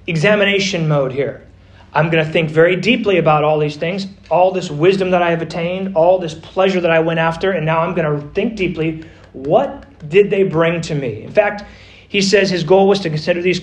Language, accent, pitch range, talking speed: English, American, 150-190 Hz, 220 wpm